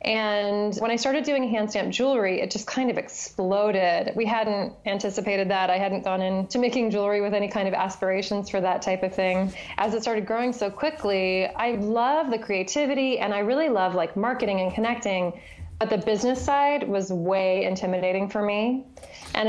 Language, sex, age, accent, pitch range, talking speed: English, female, 20-39, American, 195-230 Hz, 185 wpm